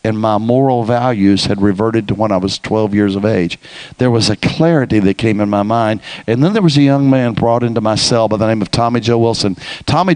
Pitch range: 115-145 Hz